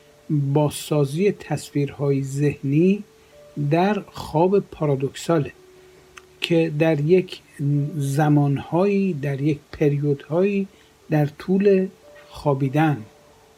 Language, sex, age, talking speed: Persian, male, 60-79, 70 wpm